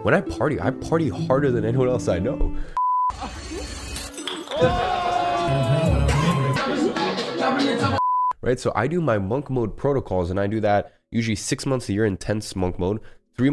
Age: 20-39